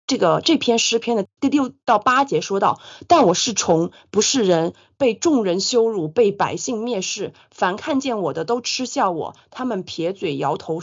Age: 30-49